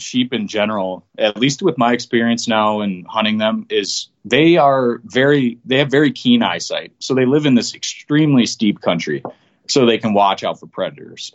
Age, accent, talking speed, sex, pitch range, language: 30-49, American, 190 wpm, male, 95-130 Hz, English